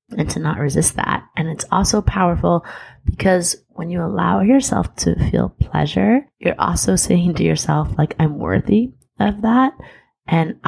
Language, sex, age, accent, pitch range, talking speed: English, female, 20-39, American, 145-175 Hz, 155 wpm